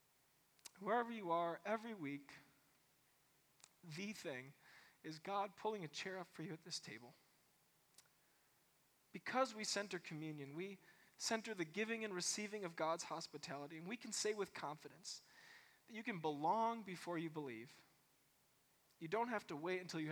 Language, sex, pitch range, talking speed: English, male, 150-200 Hz, 150 wpm